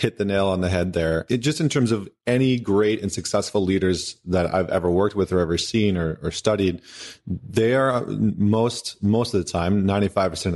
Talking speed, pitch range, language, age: 200 wpm, 90-105 Hz, English, 30-49